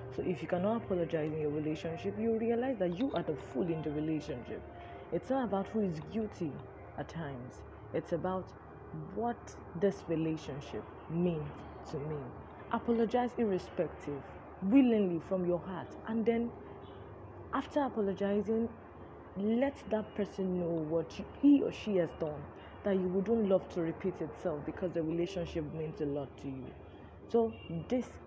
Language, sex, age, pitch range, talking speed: English, female, 20-39, 155-215 Hz, 150 wpm